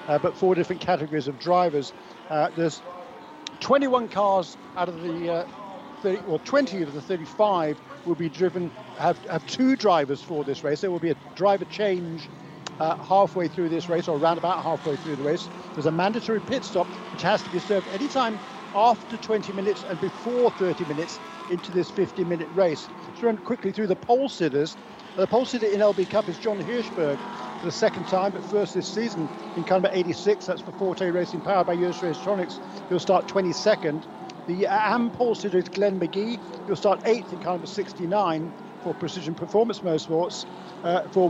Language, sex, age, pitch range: English, male, 50-69, 175-210 Hz